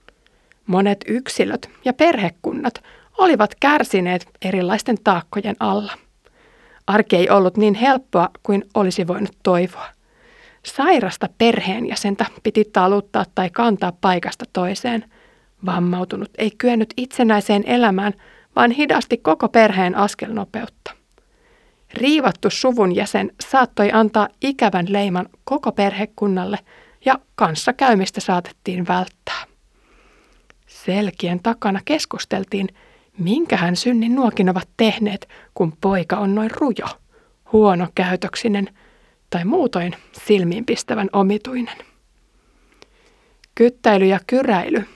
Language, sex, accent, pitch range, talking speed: Finnish, female, native, 195-235 Hz, 95 wpm